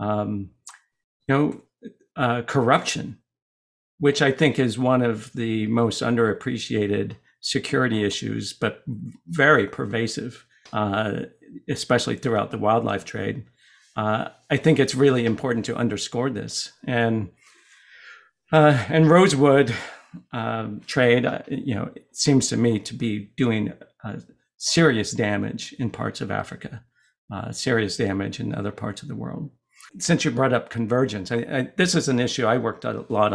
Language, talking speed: English, 140 wpm